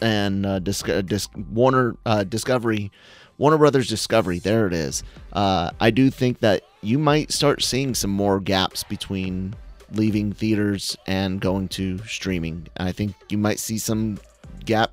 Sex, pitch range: male, 95-115 Hz